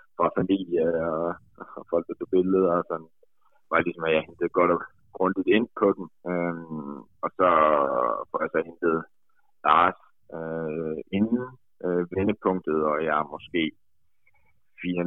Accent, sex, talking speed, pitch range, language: native, male, 130 wpm, 80-95 Hz, Danish